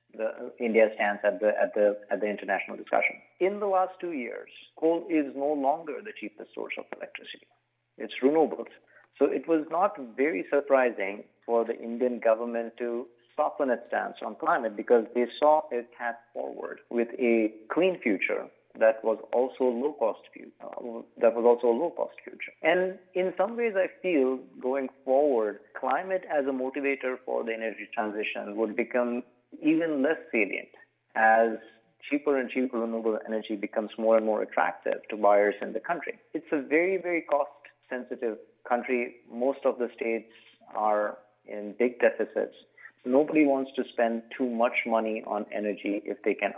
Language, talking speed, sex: English, 165 wpm, male